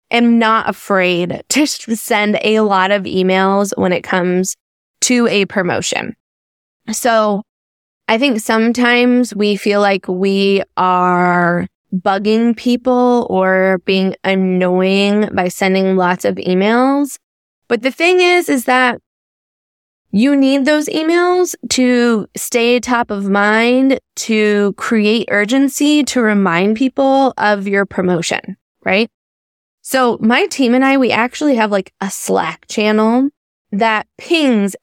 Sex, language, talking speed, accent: female, English, 125 wpm, American